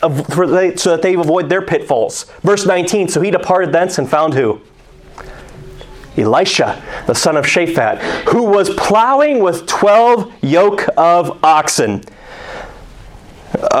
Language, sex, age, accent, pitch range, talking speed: English, male, 30-49, American, 120-165 Hz, 125 wpm